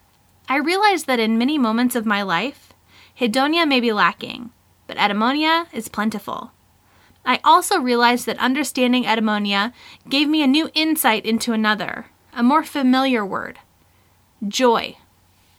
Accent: American